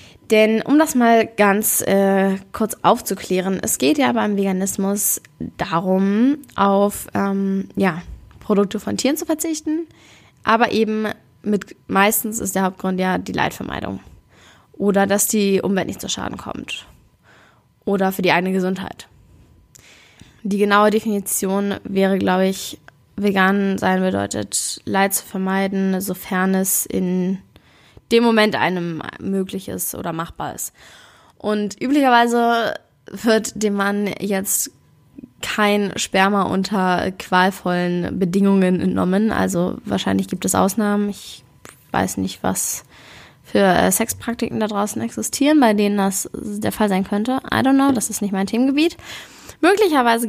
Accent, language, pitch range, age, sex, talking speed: German, German, 185-220 Hz, 10-29, female, 130 wpm